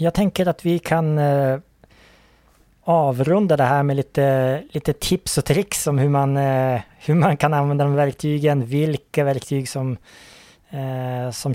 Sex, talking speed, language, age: male, 135 wpm, Swedish, 20-39